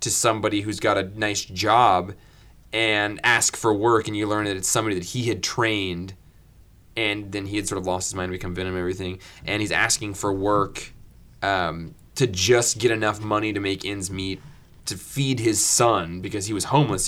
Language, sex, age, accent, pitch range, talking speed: English, male, 20-39, American, 100-120 Hz, 200 wpm